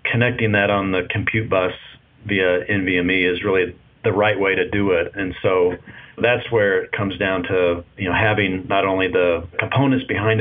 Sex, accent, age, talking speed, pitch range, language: male, American, 40-59, 185 wpm, 95-120 Hz, English